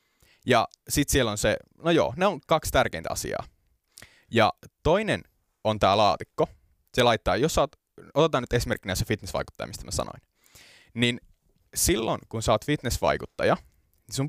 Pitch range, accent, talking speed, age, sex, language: 95-120 Hz, native, 155 wpm, 20-39, male, Finnish